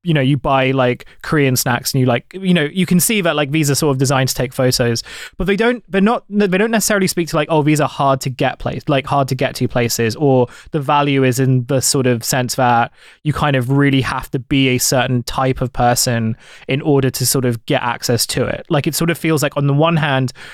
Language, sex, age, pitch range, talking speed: English, male, 20-39, 130-150 Hz, 265 wpm